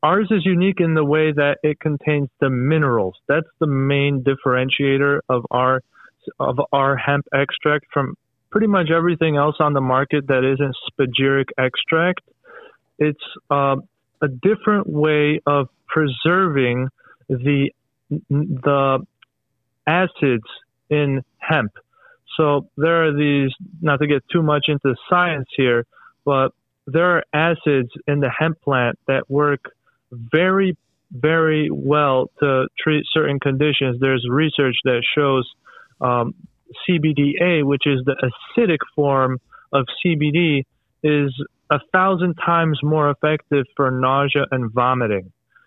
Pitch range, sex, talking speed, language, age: 135-155 Hz, male, 125 wpm, English, 30-49